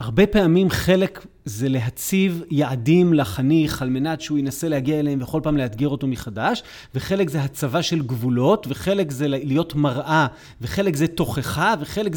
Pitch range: 145-190 Hz